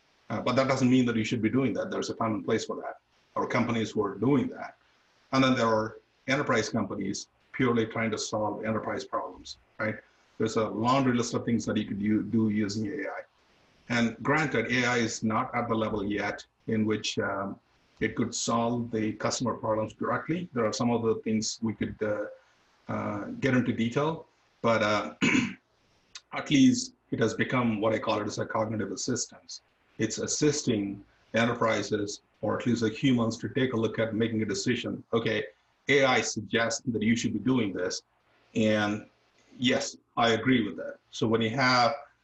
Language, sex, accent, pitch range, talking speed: English, male, Indian, 110-125 Hz, 185 wpm